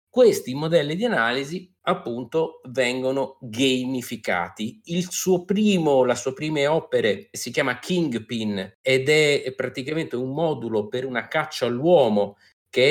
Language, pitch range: Italian, 110-160 Hz